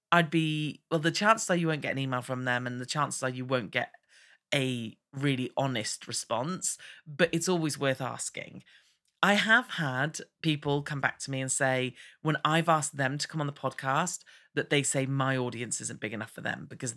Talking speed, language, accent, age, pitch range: 210 wpm, English, British, 40-59, 130-165 Hz